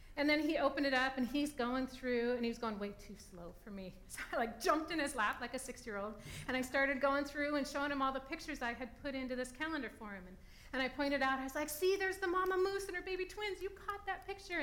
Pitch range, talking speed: 260-330 Hz, 285 wpm